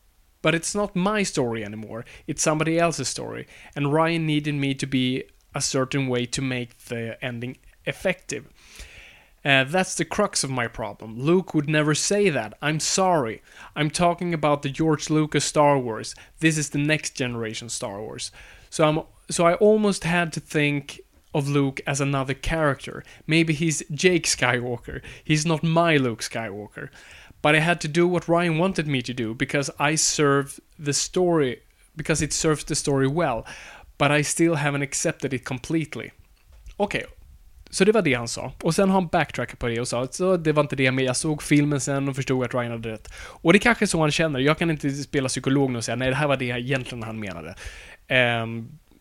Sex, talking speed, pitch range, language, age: male, 200 wpm, 125-160 Hz, Swedish, 30-49